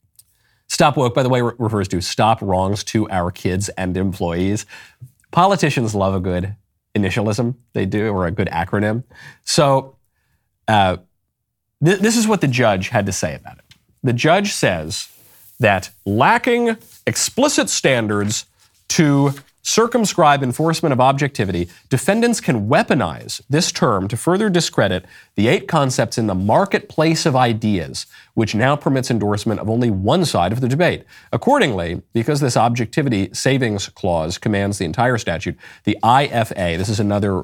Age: 30-49